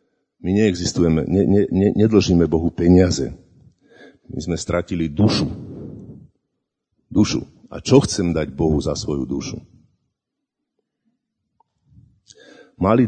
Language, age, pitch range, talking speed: Slovak, 50-69, 80-105 Hz, 100 wpm